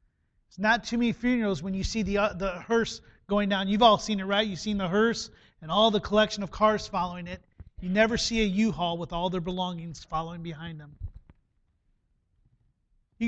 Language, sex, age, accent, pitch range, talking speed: English, male, 30-49, American, 175-240 Hz, 195 wpm